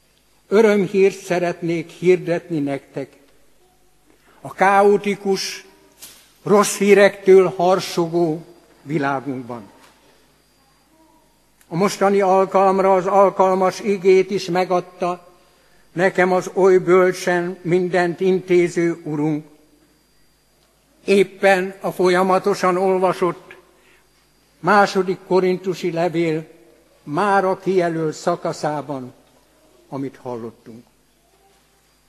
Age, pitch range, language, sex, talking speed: 60-79, 170-195 Hz, Hungarian, male, 70 wpm